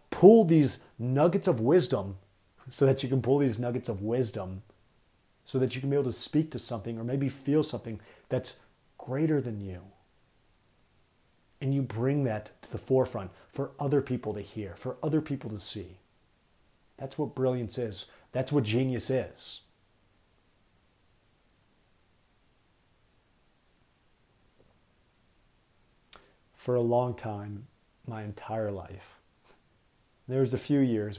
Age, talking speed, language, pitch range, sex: 30-49, 135 wpm, English, 105-130 Hz, male